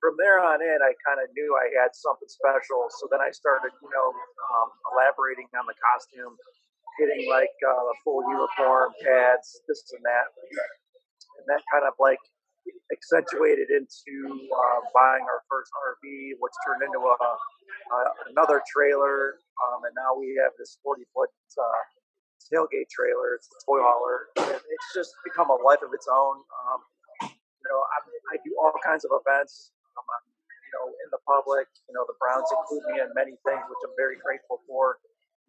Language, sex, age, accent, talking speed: English, male, 40-59, American, 170 wpm